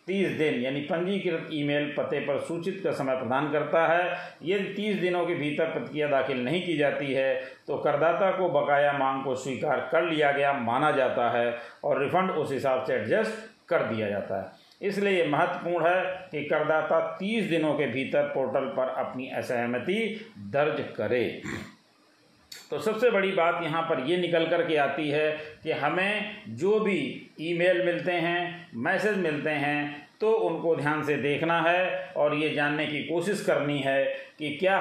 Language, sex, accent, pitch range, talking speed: Hindi, male, native, 145-185 Hz, 170 wpm